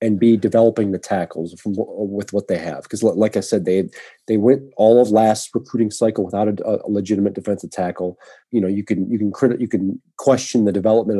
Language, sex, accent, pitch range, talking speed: English, male, American, 100-125 Hz, 225 wpm